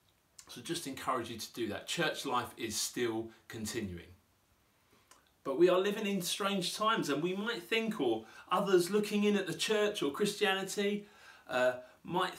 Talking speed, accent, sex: 165 wpm, British, male